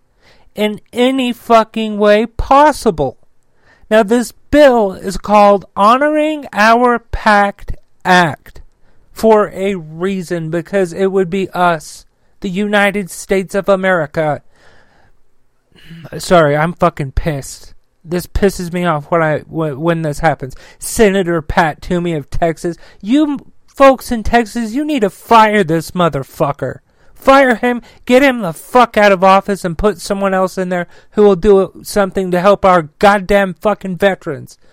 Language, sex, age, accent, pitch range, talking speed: English, male, 40-59, American, 170-210 Hz, 140 wpm